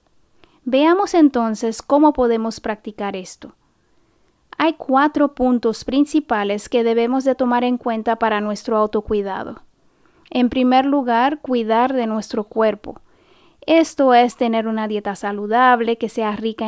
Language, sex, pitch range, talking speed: Spanish, female, 220-270 Hz, 125 wpm